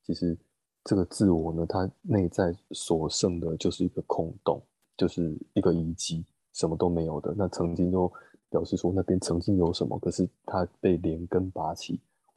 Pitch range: 85-95 Hz